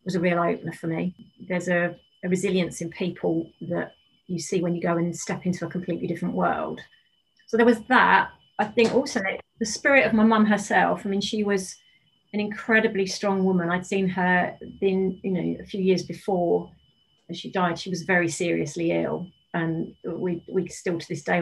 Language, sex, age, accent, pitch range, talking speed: English, female, 30-49, British, 170-200 Hz, 195 wpm